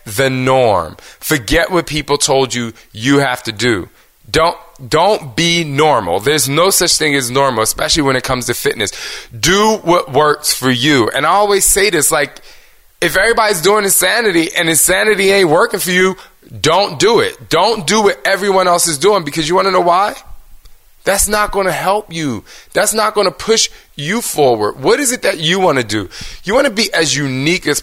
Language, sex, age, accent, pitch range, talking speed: English, male, 20-39, American, 130-185 Hz, 200 wpm